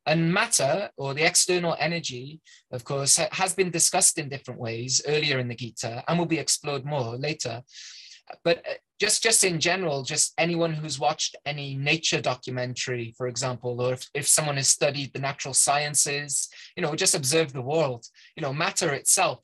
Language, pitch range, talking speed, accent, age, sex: English, 130-170 Hz, 175 wpm, British, 20-39, male